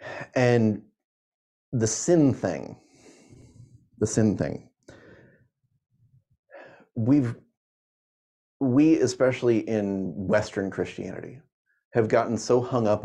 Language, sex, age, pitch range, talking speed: English, male, 30-49, 105-135 Hz, 85 wpm